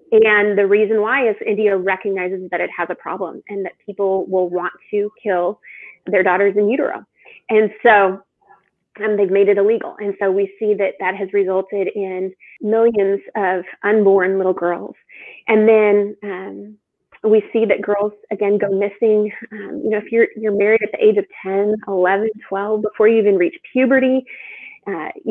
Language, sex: English, female